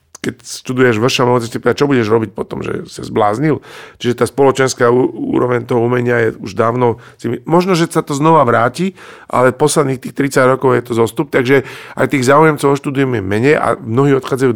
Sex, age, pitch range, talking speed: male, 50-69, 115-135 Hz, 175 wpm